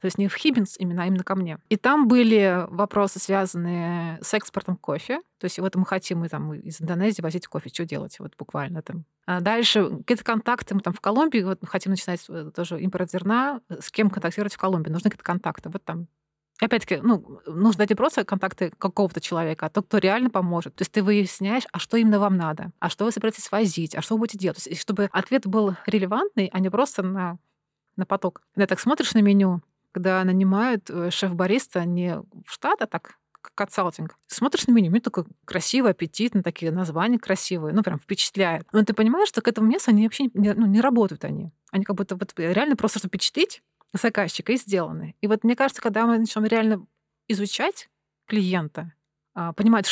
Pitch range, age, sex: 175-220 Hz, 20-39, female